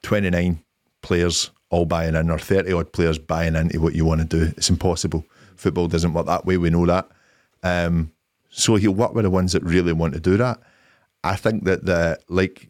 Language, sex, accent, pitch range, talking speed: English, male, British, 85-95 Hz, 210 wpm